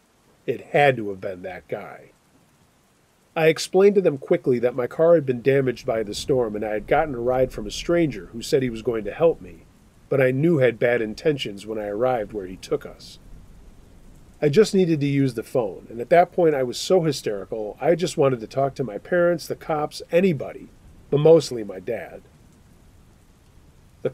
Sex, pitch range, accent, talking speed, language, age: male, 120-165 Hz, American, 205 wpm, English, 40-59